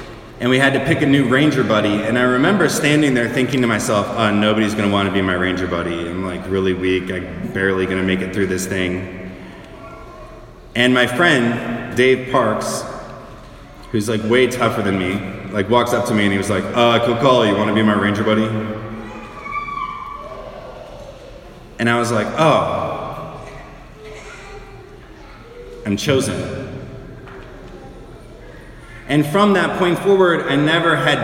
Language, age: English, 30-49